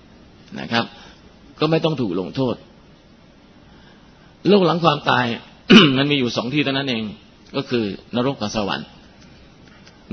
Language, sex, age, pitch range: Thai, male, 30-49, 120-155 Hz